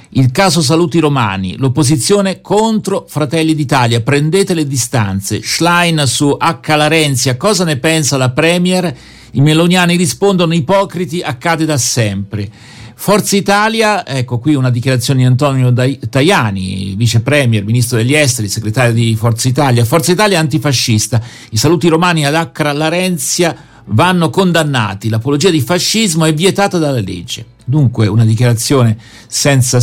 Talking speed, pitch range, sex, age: 135 wpm, 120-170 Hz, male, 50-69